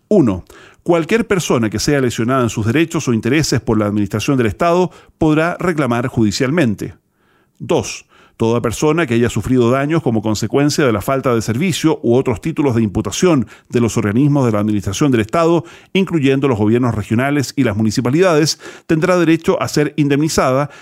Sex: male